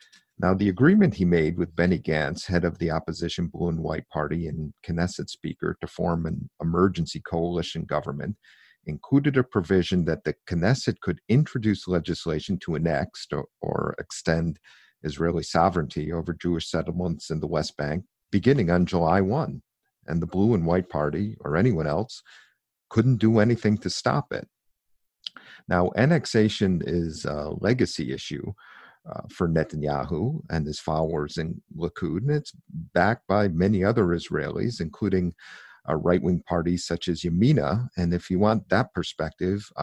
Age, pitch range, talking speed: 50-69, 80-100 Hz, 150 wpm